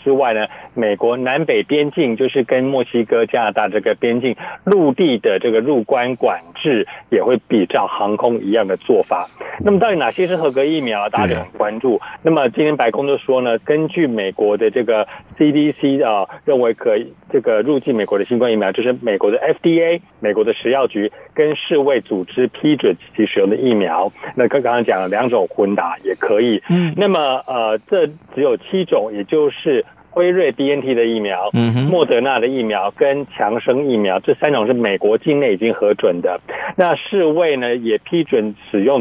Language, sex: Chinese, male